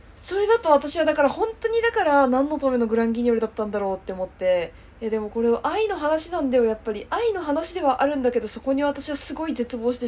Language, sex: Japanese, female